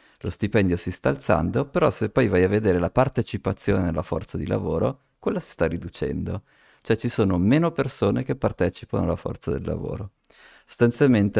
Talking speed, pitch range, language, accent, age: 175 wpm, 90-105 Hz, Italian, native, 30-49